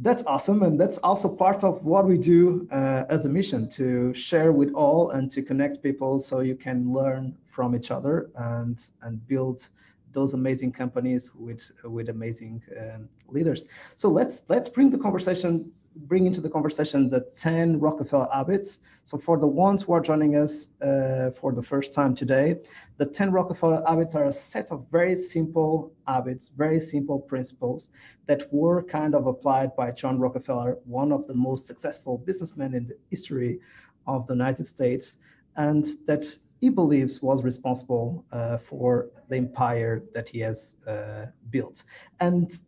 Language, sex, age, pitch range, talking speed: English, male, 30-49, 125-160 Hz, 165 wpm